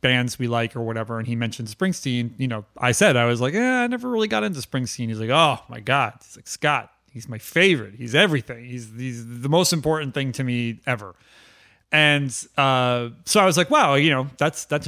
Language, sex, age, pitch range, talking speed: English, male, 30-49, 120-150 Hz, 225 wpm